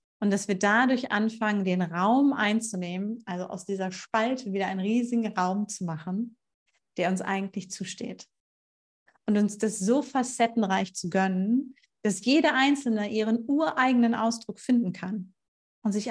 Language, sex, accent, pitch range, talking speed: German, female, German, 190-225 Hz, 145 wpm